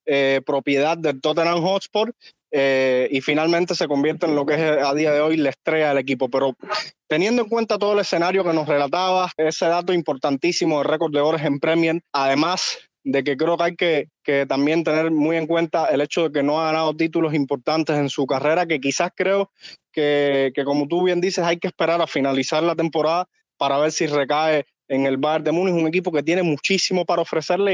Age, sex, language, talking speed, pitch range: 20-39, male, Spanish, 210 wpm, 145-175 Hz